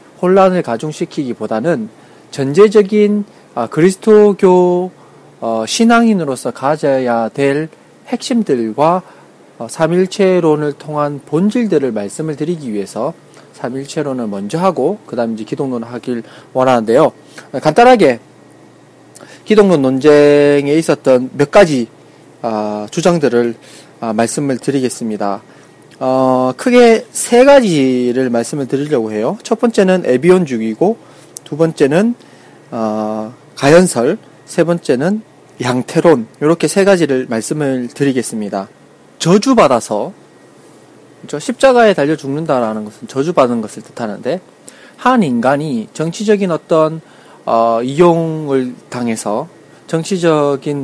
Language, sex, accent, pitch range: Korean, male, native, 125-185 Hz